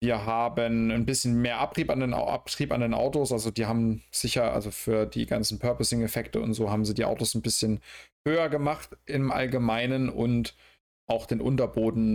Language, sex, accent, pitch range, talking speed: German, male, German, 105-120 Hz, 170 wpm